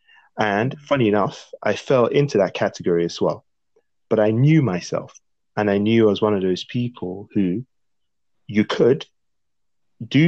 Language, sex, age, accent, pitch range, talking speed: English, male, 20-39, British, 100-125 Hz, 160 wpm